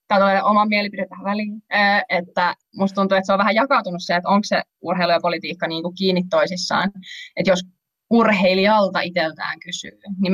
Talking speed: 175 wpm